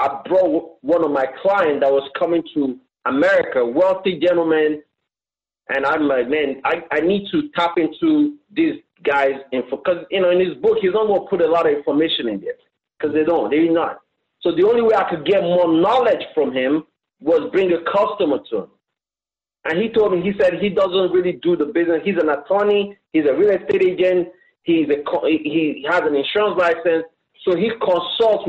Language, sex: English, male